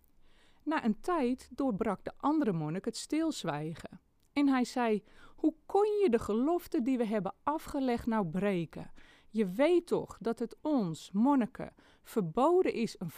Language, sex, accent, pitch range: Dutch, female, Dutch, 185-260 Hz